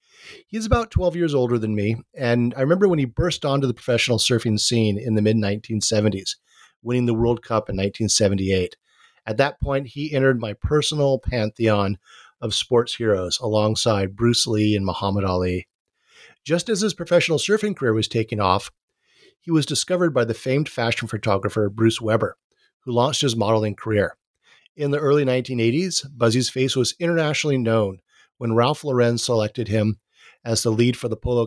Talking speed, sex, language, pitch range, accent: 170 wpm, male, English, 110-135 Hz, American